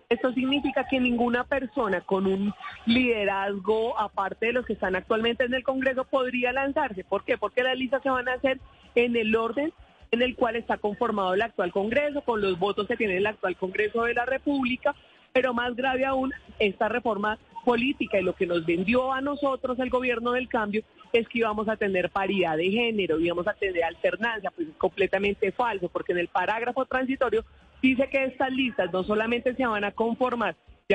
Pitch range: 205-255 Hz